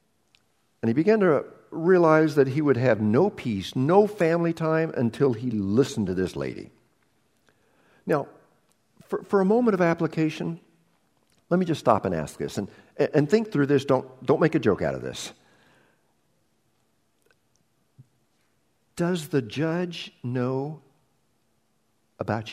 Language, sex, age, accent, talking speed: English, male, 60-79, American, 140 wpm